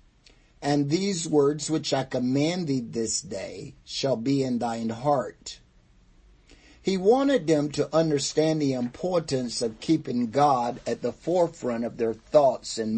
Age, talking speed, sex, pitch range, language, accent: 50-69, 145 wpm, male, 115-155 Hz, English, American